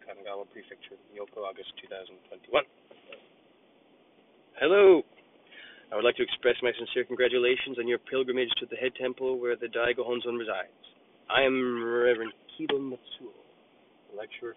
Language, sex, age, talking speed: English, male, 20-39, 135 wpm